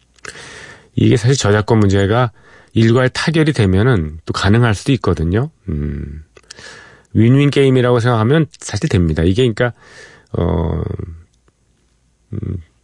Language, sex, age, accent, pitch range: Korean, male, 40-59, native, 90-125 Hz